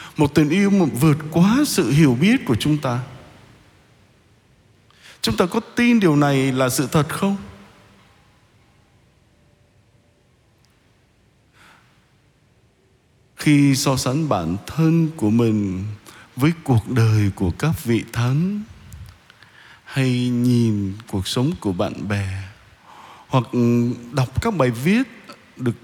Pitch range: 115-160 Hz